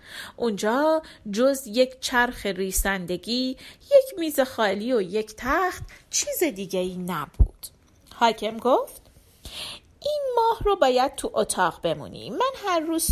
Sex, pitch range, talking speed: female, 200-310 Hz, 125 wpm